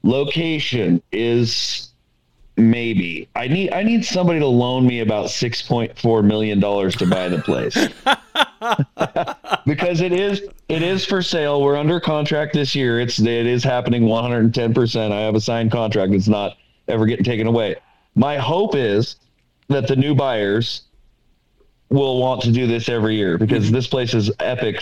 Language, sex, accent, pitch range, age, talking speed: English, male, American, 110-140 Hz, 40-59, 160 wpm